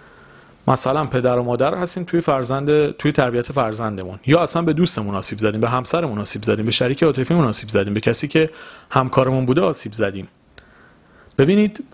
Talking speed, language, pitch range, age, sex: 165 wpm, Persian, 110-155 Hz, 40-59, male